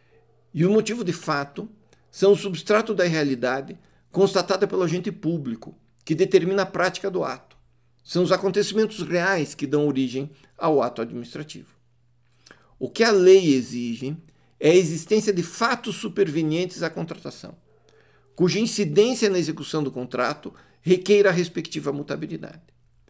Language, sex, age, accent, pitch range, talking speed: Portuguese, male, 60-79, Brazilian, 125-190 Hz, 140 wpm